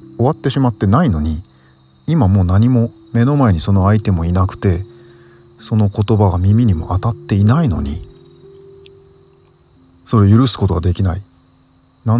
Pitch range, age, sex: 95-120 Hz, 40-59, male